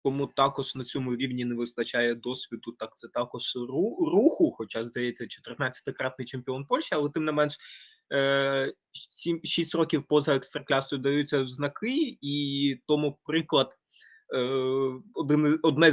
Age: 20-39